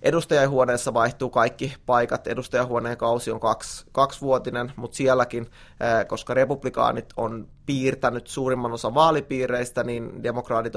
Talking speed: 110 wpm